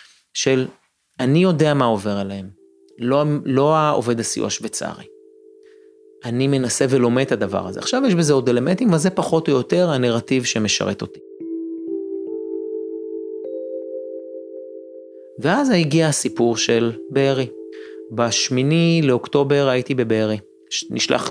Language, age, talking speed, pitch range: Hebrew, 30-49, 110 wpm, 110-180 Hz